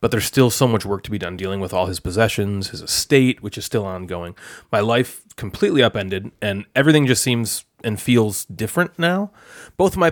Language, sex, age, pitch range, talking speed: English, male, 30-49, 110-145 Hz, 210 wpm